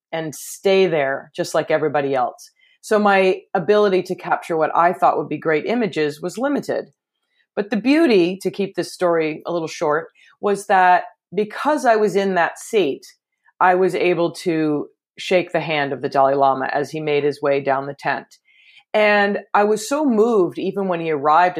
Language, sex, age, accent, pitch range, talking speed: English, female, 30-49, American, 155-215 Hz, 185 wpm